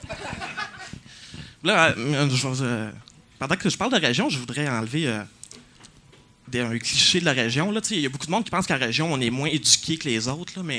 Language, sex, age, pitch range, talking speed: French, male, 30-49, 125-160 Hz, 230 wpm